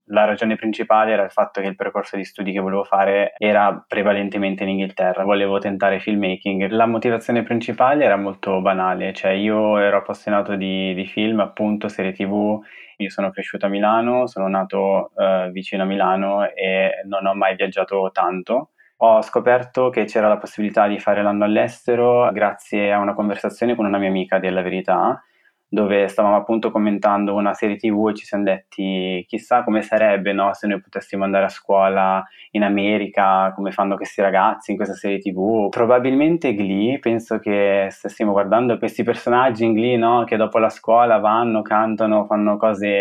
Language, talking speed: Italian, 170 wpm